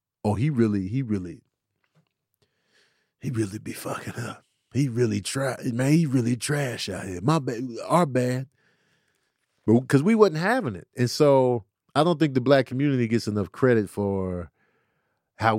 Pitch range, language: 105-140 Hz, English